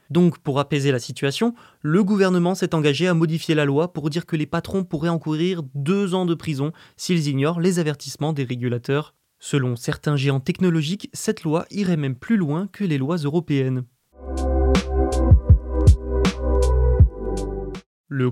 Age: 20-39